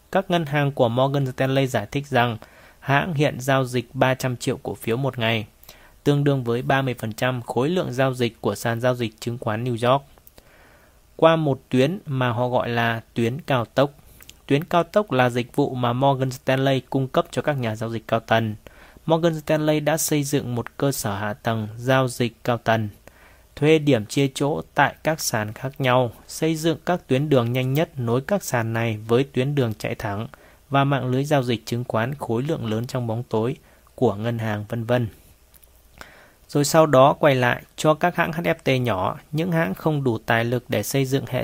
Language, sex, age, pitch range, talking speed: English, male, 20-39, 115-140 Hz, 205 wpm